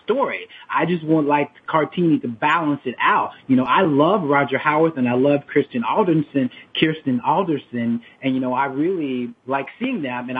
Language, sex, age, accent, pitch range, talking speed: English, male, 30-49, American, 130-155 Hz, 185 wpm